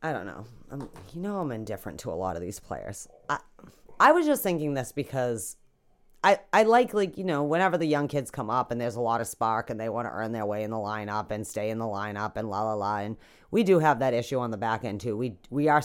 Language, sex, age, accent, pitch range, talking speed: English, female, 30-49, American, 110-150 Hz, 265 wpm